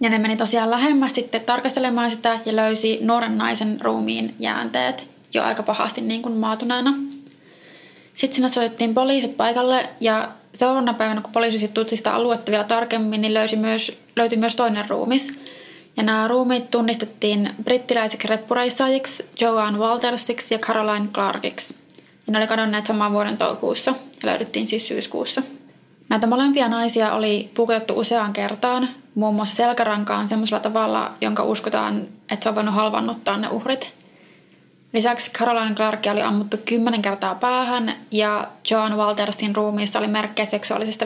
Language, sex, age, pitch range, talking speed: Finnish, female, 20-39, 215-245 Hz, 145 wpm